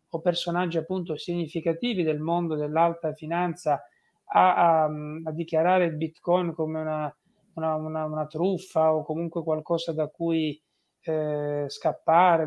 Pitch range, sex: 155-175 Hz, male